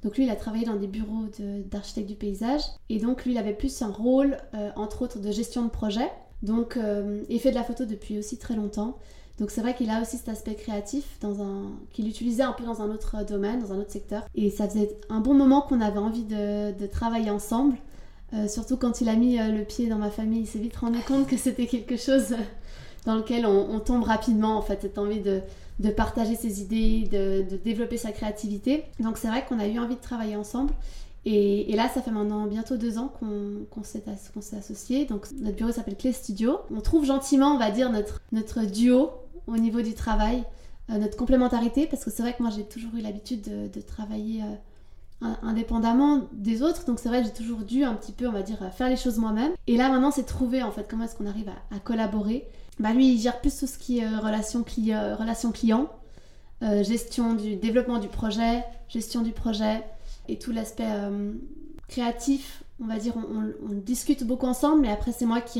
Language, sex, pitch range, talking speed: French, female, 210-245 Hz, 225 wpm